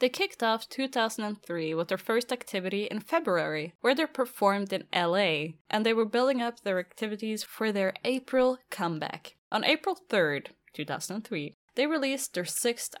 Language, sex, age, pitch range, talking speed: English, female, 10-29, 185-260 Hz, 155 wpm